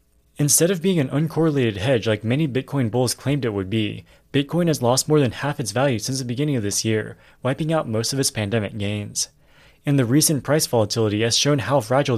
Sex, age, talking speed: male, 20-39, 215 wpm